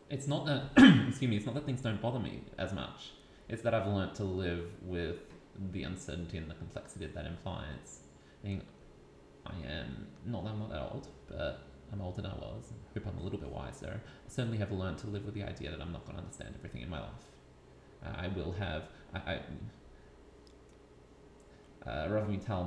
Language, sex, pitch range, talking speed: English, male, 90-130 Hz, 205 wpm